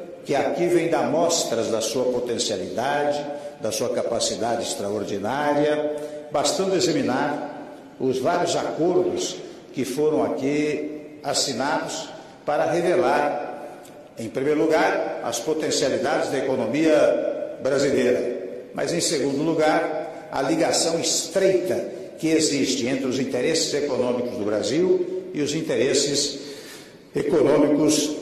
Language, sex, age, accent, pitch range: Chinese, male, 60-79, Brazilian, 140-175 Hz